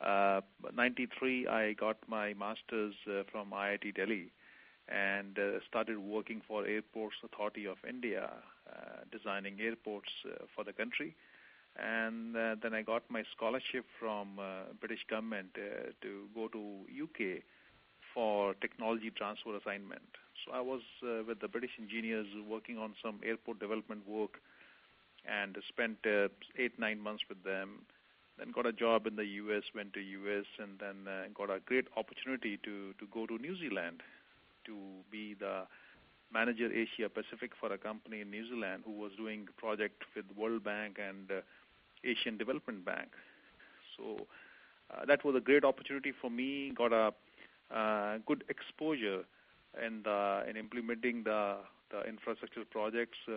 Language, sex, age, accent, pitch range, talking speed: English, male, 40-59, Indian, 100-115 Hz, 155 wpm